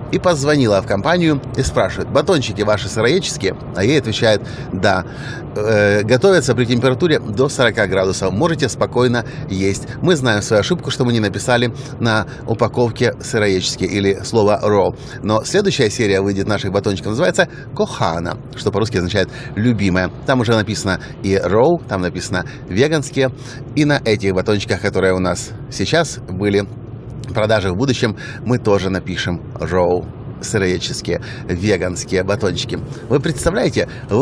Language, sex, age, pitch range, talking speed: Russian, male, 30-49, 105-135 Hz, 140 wpm